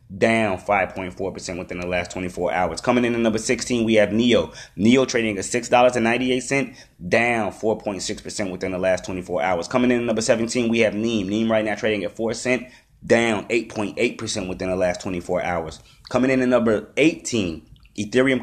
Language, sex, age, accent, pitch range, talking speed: English, male, 20-39, American, 100-125 Hz, 175 wpm